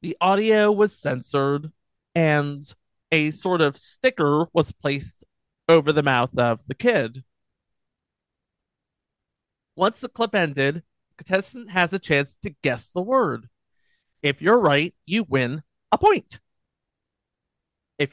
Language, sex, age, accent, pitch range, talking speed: English, male, 30-49, American, 135-190 Hz, 125 wpm